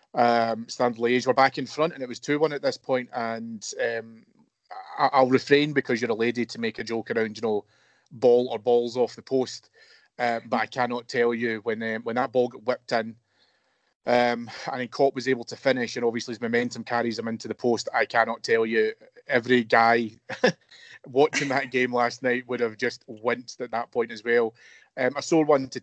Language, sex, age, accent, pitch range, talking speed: English, male, 30-49, British, 115-140 Hz, 210 wpm